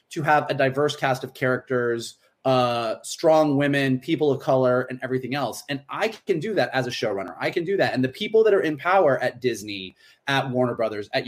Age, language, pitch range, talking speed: 30-49, English, 125-155 Hz, 220 wpm